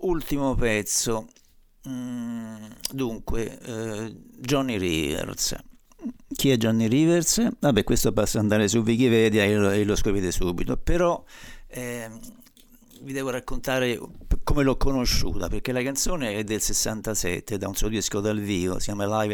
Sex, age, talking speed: male, 50-69, 140 wpm